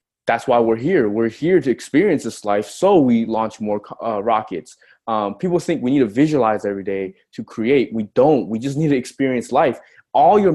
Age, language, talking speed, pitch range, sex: 20-39, English, 210 wpm, 115-155 Hz, male